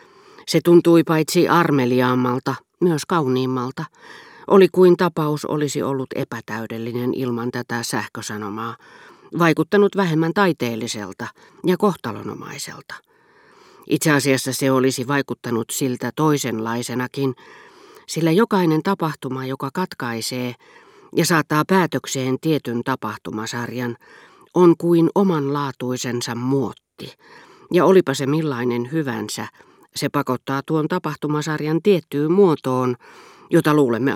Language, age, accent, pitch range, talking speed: Finnish, 40-59, native, 125-170 Hz, 95 wpm